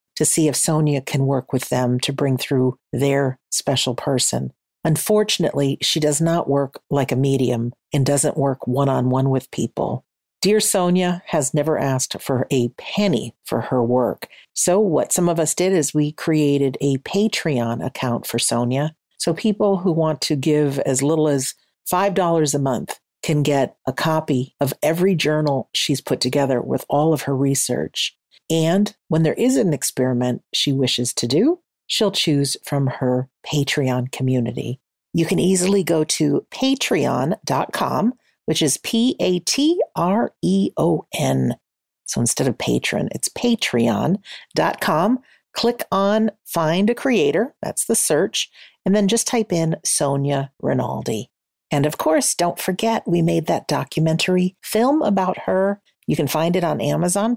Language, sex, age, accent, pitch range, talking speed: English, female, 50-69, American, 135-185 Hz, 150 wpm